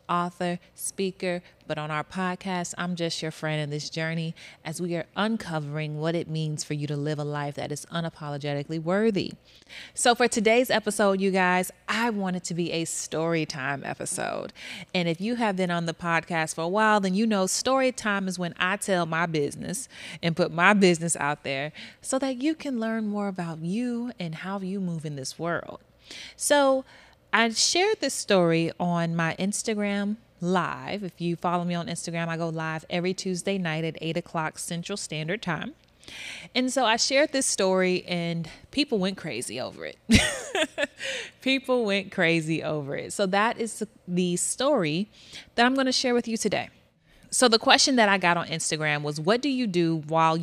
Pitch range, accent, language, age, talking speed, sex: 165-215 Hz, American, English, 30-49, 190 wpm, female